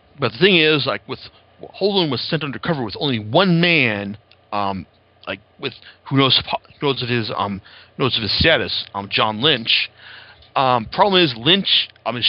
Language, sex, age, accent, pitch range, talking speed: English, male, 40-59, American, 110-145 Hz, 180 wpm